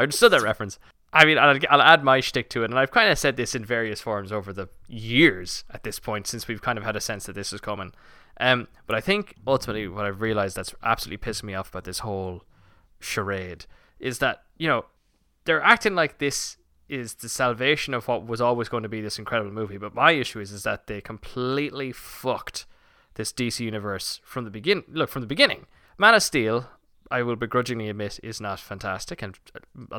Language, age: English, 10-29